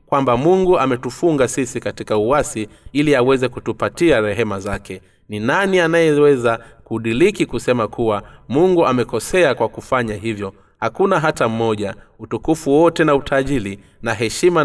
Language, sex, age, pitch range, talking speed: Swahili, male, 30-49, 105-135 Hz, 125 wpm